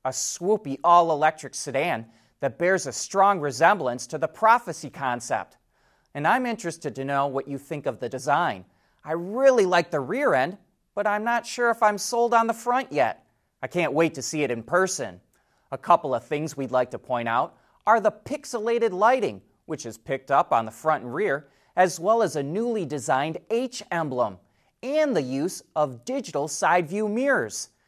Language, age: English, 30-49